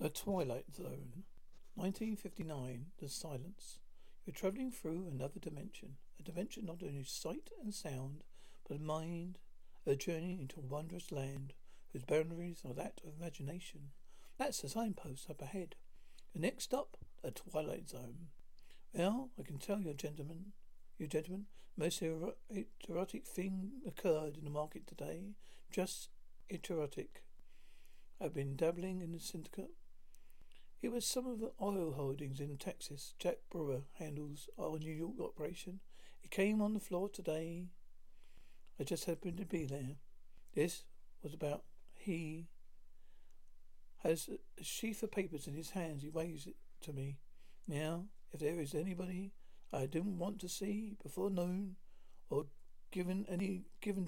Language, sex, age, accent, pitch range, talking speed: English, male, 60-79, British, 150-190 Hz, 140 wpm